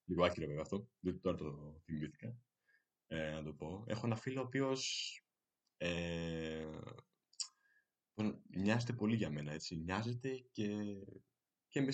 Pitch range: 90-145 Hz